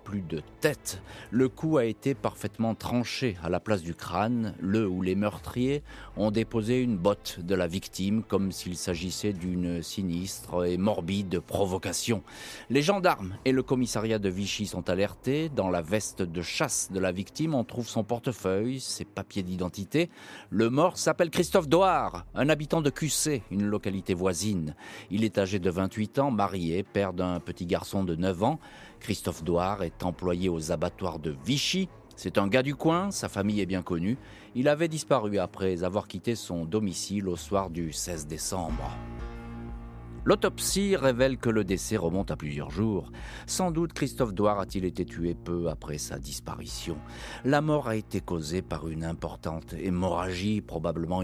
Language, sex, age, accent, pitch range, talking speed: French, male, 40-59, French, 90-115 Hz, 170 wpm